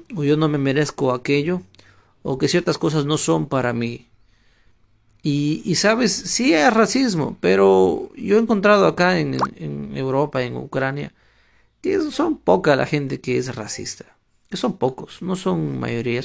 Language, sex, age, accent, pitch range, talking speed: Spanish, male, 40-59, Mexican, 130-185 Hz, 165 wpm